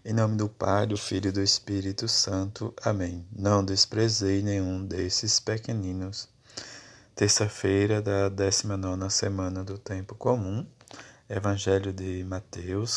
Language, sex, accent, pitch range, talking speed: Portuguese, male, Brazilian, 95-110 Hz, 120 wpm